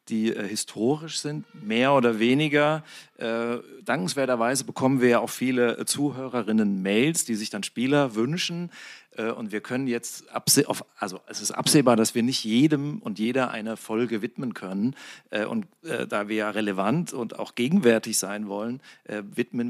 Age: 40-59